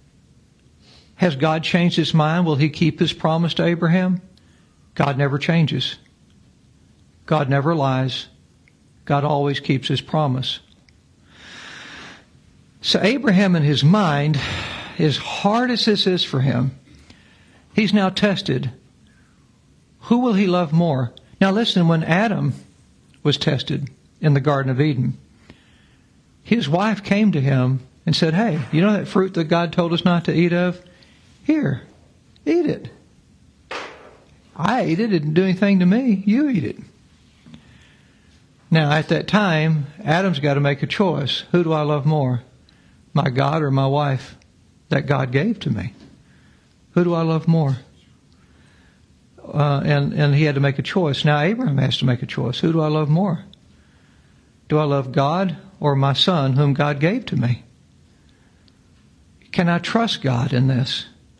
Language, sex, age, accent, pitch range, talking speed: English, male, 60-79, American, 140-180 Hz, 155 wpm